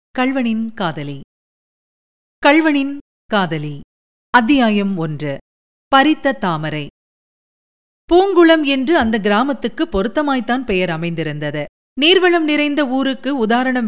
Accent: native